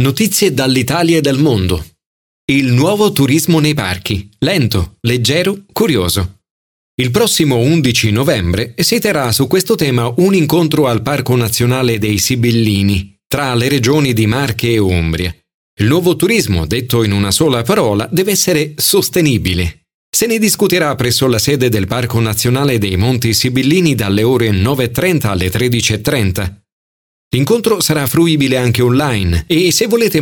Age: 40-59